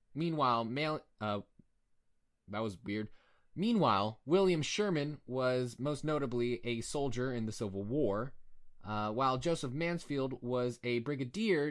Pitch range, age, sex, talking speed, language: 115-165 Hz, 20-39, male, 125 wpm, English